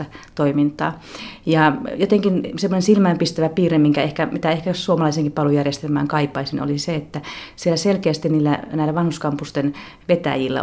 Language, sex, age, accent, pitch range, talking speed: Finnish, female, 30-49, native, 145-170 Hz, 125 wpm